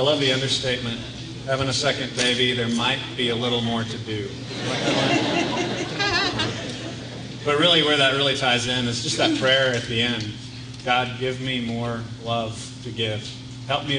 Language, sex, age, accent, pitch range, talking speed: English, male, 30-49, American, 120-145 Hz, 165 wpm